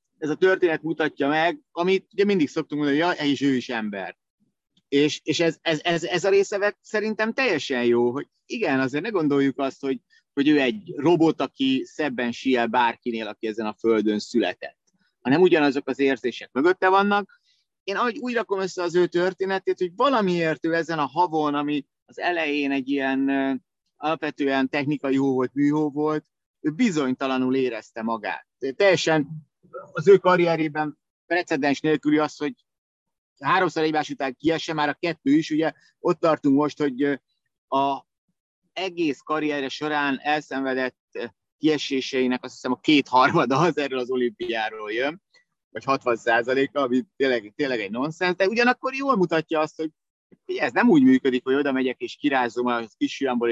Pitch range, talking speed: 130-170 Hz, 160 wpm